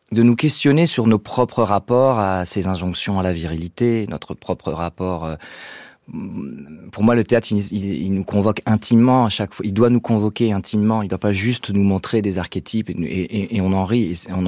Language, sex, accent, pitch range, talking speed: French, male, French, 95-115 Hz, 210 wpm